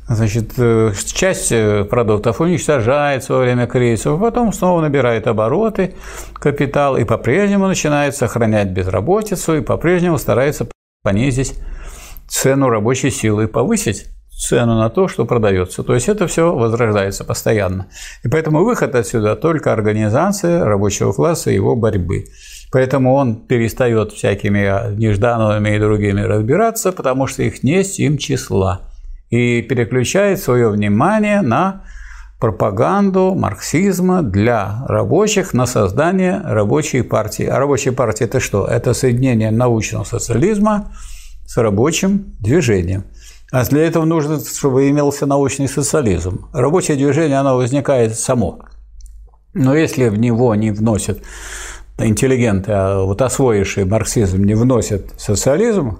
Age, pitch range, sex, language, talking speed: 50-69, 105-150 Hz, male, Russian, 120 wpm